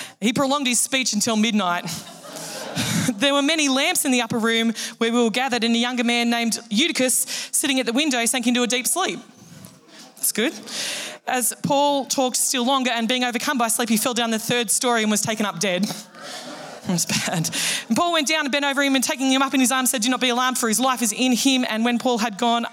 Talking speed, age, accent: 240 wpm, 20-39, Australian